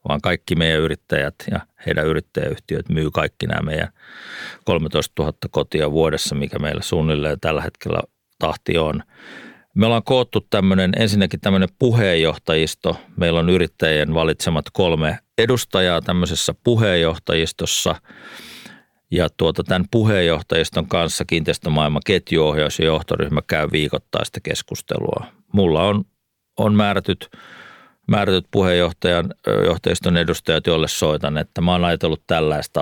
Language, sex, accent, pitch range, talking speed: Finnish, male, native, 80-95 Hz, 115 wpm